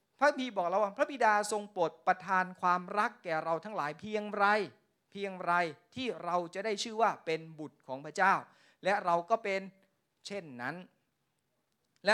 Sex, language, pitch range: male, Thai, 175-225 Hz